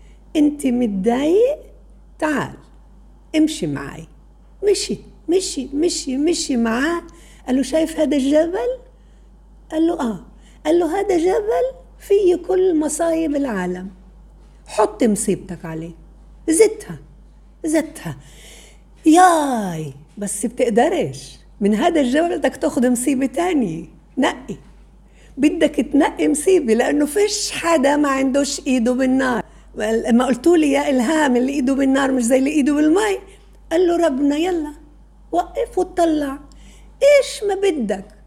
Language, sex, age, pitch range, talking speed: Arabic, female, 60-79, 230-310 Hz, 120 wpm